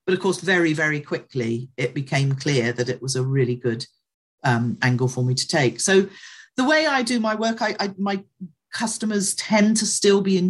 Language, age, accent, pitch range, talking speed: English, 40-59, British, 145-185 Hz, 210 wpm